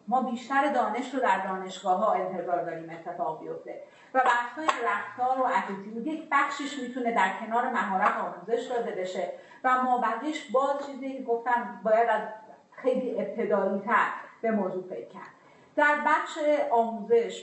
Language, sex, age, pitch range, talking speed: Persian, female, 40-59, 210-255 Hz, 150 wpm